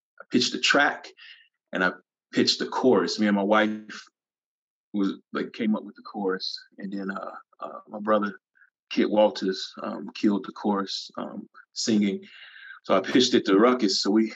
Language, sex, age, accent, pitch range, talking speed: English, male, 30-49, American, 100-110 Hz, 170 wpm